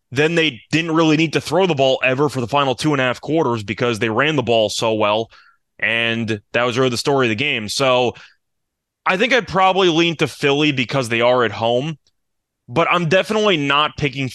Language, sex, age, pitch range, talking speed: English, male, 20-39, 120-155 Hz, 220 wpm